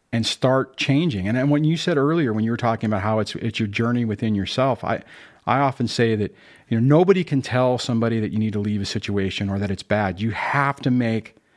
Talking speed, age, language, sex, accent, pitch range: 245 wpm, 40-59, English, male, American, 110-140 Hz